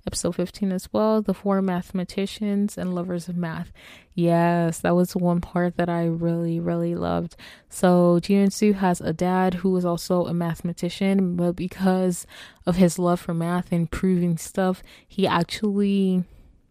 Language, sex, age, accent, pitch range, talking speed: English, female, 20-39, American, 175-195 Hz, 160 wpm